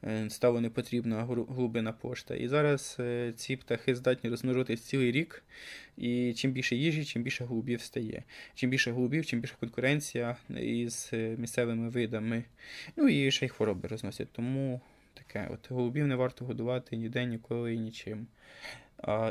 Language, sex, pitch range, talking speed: Ukrainian, male, 115-135 Hz, 145 wpm